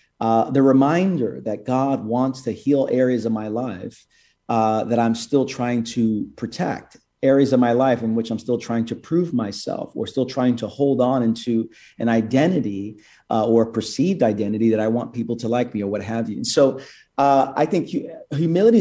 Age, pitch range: 40-59, 115-135 Hz